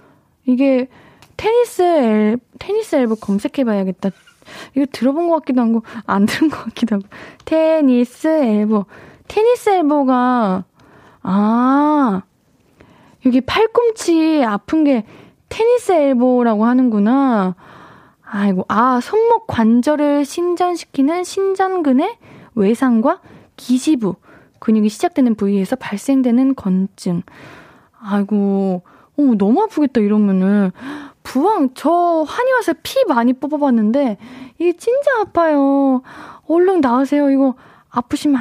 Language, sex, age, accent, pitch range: Korean, female, 20-39, native, 220-320 Hz